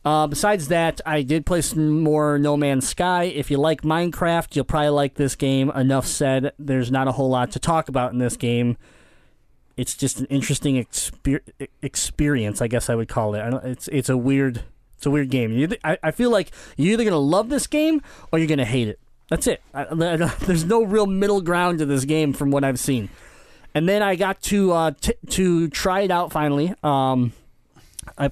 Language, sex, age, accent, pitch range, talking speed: English, male, 20-39, American, 125-155 Hz, 205 wpm